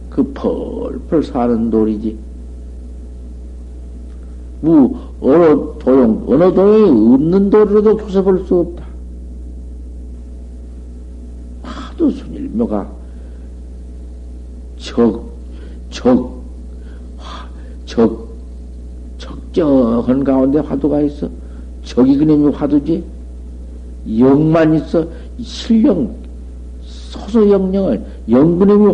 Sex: male